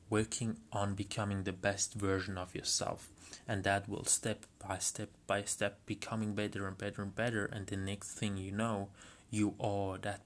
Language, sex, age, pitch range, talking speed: English, male, 20-39, 100-115 Hz, 180 wpm